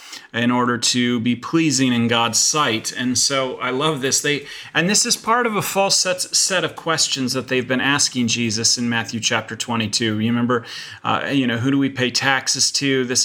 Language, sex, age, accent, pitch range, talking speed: English, male, 30-49, American, 125-145 Hz, 210 wpm